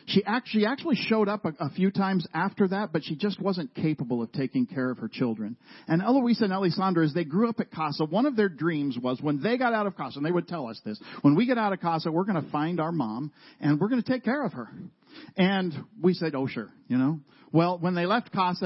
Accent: American